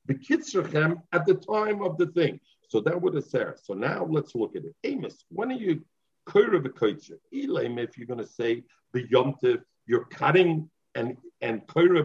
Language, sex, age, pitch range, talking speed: English, male, 50-69, 155-220 Hz, 190 wpm